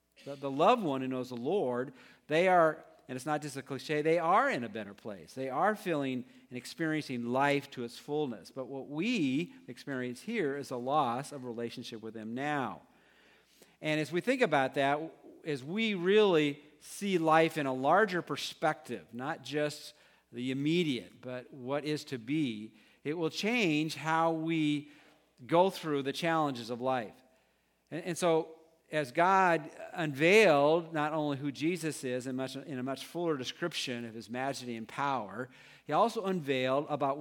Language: English